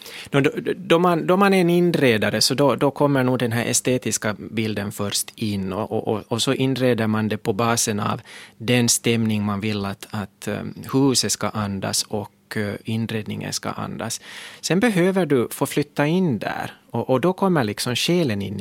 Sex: male